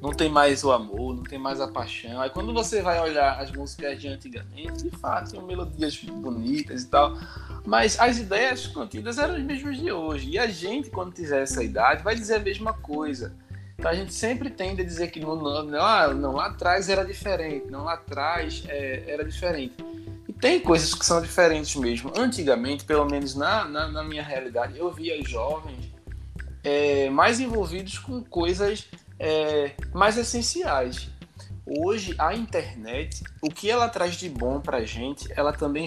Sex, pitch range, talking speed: male, 120-170 Hz, 180 wpm